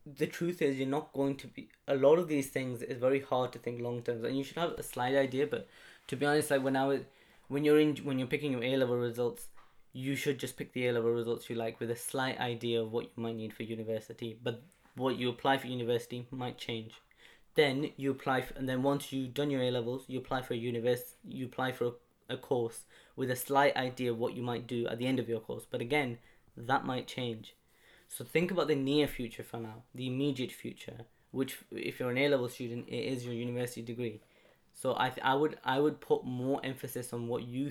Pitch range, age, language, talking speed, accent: 120-135 Hz, 20-39, English, 245 wpm, British